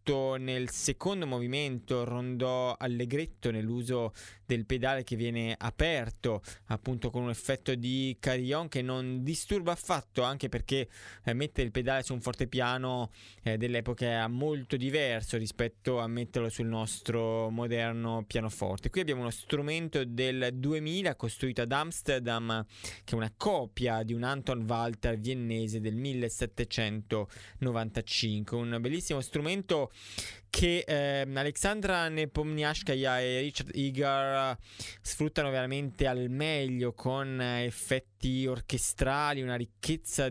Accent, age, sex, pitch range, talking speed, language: native, 20-39, male, 115-145 Hz, 120 wpm, Italian